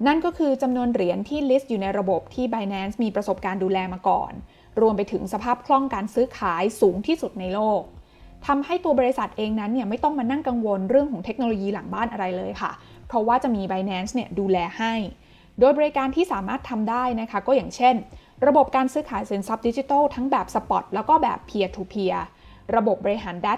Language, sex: Thai, female